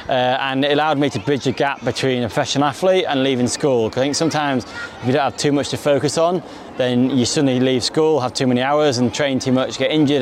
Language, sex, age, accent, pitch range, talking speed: English, male, 20-39, British, 125-145 Hz, 255 wpm